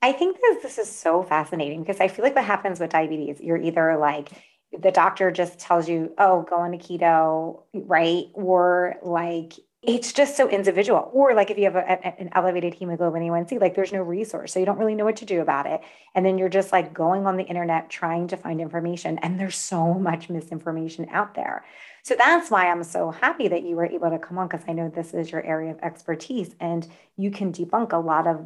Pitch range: 165-195 Hz